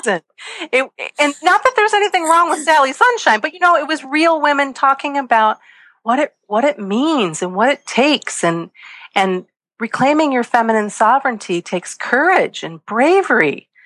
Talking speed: 165 wpm